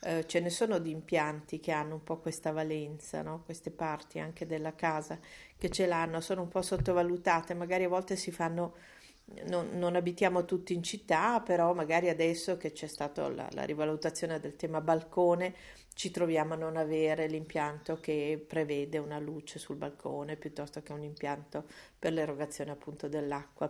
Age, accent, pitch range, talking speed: 50-69, native, 155-180 Hz, 165 wpm